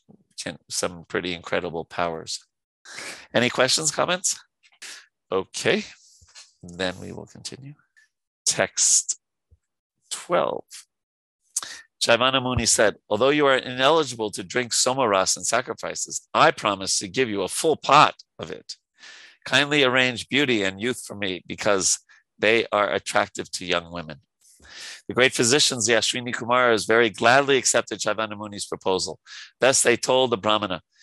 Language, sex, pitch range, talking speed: English, male, 100-125 Hz, 130 wpm